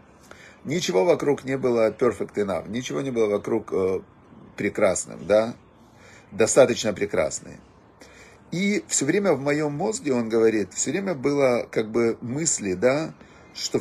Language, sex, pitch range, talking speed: Russian, male, 115-140 Hz, 135 wpm